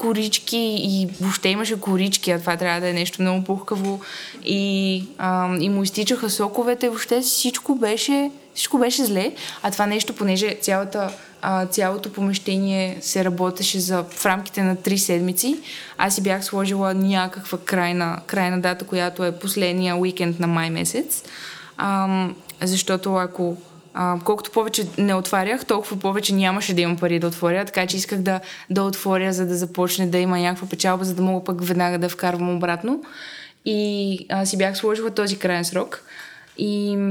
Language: Bulgarian